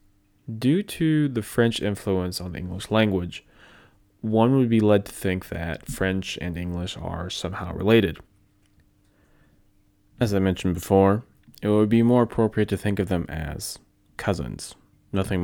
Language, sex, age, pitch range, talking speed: English, male, 20-39, 90-105 Hz, 150 wpm